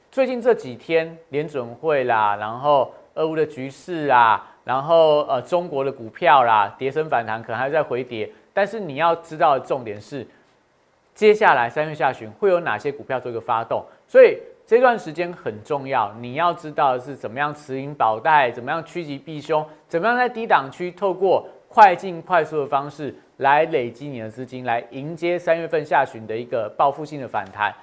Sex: male